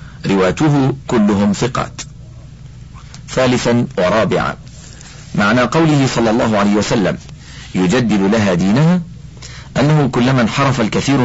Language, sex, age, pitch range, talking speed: Arabic, male, 50-69, 110-145 Hz, 95 wpm